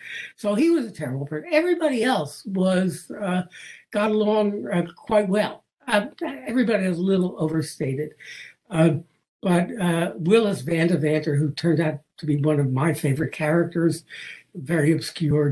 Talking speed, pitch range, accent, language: 155 wpm, 160-215 Hz, American, English